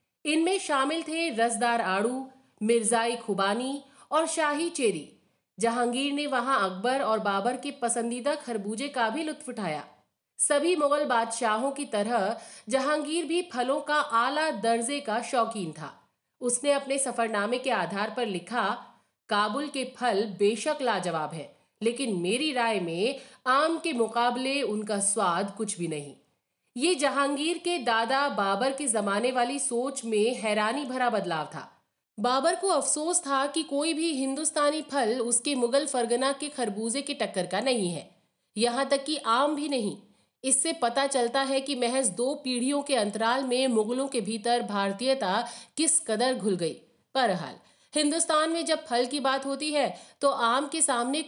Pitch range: 225-280 Hz